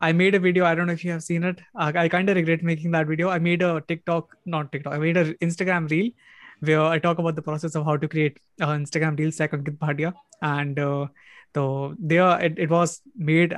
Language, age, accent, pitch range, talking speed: Hindi, 20-39, native, 155-175 Hz, 240 wpm